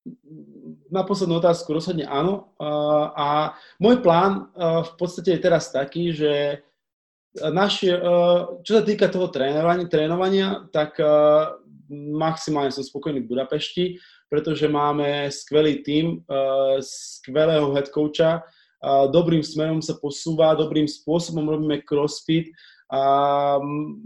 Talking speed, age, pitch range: 120 wpm, 20-39, 140-165 Hz